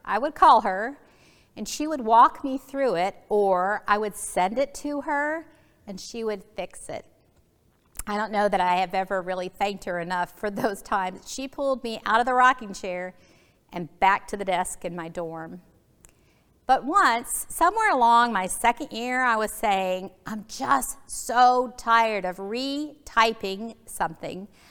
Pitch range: 190-260 Hz